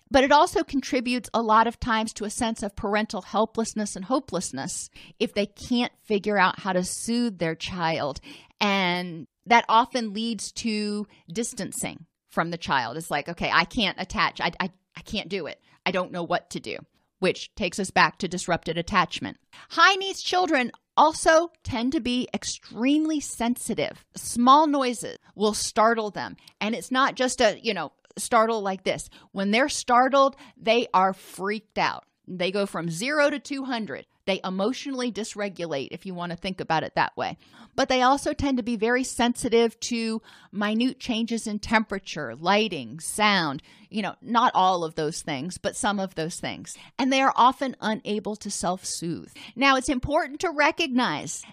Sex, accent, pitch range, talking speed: female, American, 185-250 Hz, 170 wpm